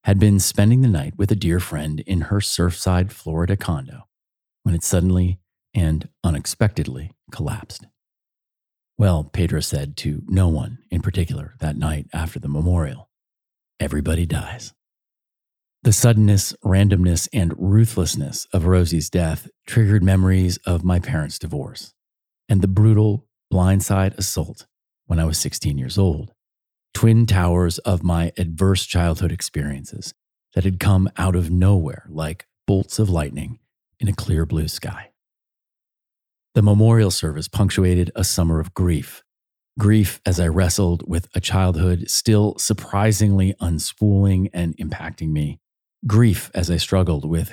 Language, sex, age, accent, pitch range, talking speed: English, male, 40-59, American, 85-100 Hz, 135 wpm